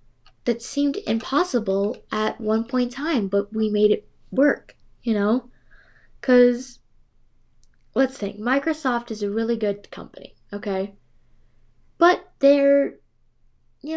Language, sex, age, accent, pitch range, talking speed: English, female, 10-29, American, 205-265 Hz, 120 wpm